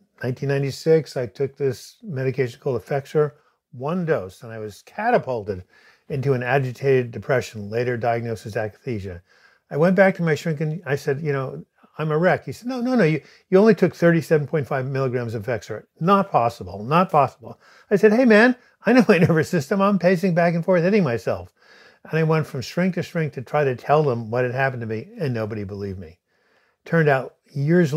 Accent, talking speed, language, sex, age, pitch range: American, 195 wpm, English, male, 50-69, 115-155 Hz